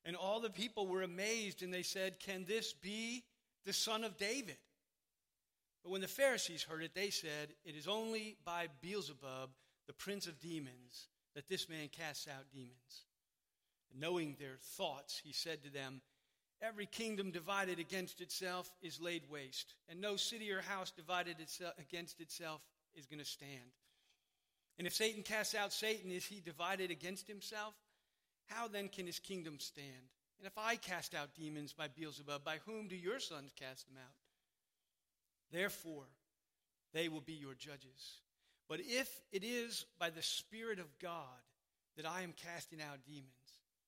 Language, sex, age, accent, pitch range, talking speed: English, male, 50-69, American, 150-200 Hz, 165 wpm